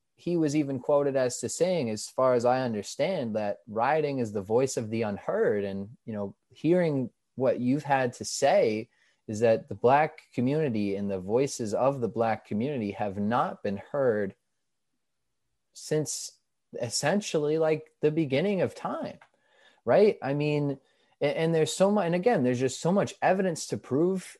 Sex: male